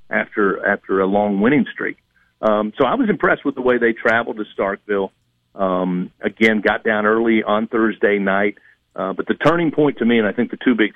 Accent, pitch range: American, 95-120 Hz